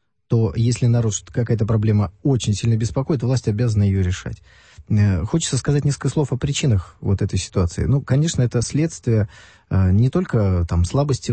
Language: Russian